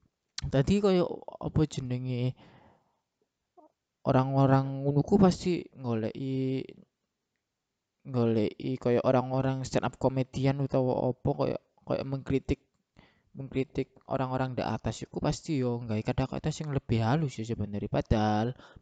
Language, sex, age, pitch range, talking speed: Indonesian, male, 20-39, 115-140 Hz, 100 wpm